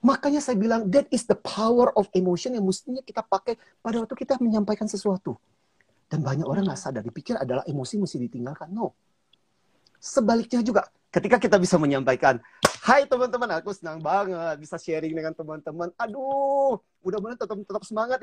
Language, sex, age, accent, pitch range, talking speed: Indonesian, male, 30-49, native, 160-225 Hz, 160 wpm